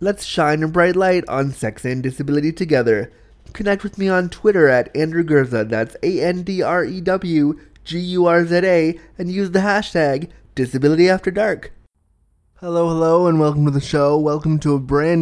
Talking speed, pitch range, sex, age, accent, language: 140 wpm, 125-165 Hz, male, 20-39, American, English